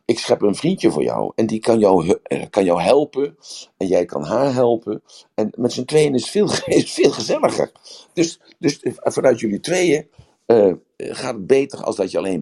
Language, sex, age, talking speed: Dutch, male, 60-79, 195 wpm